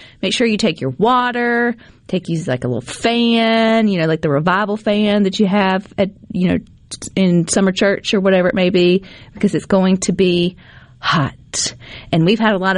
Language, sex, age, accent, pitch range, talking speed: English, female, 30-49, American, 170-215 Hz, 200 wpm